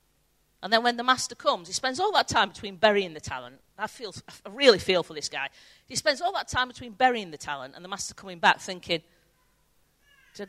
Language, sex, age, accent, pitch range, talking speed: English, female, 40-59, British, 160-215 Hz, 230 wpm